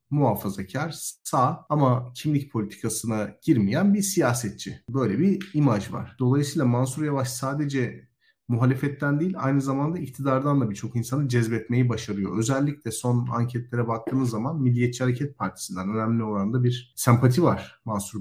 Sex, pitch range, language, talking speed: male, 115-140 Hz, Turkish, 130 wpm